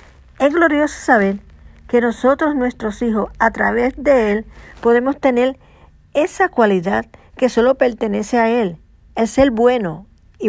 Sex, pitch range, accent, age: female, 185-250 Hz, American, 50-69